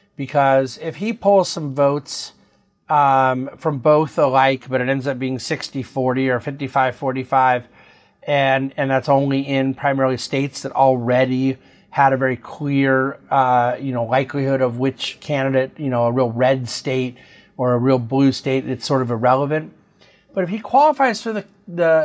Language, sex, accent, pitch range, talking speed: English, male, American, 125-150 Hz, 165 wpm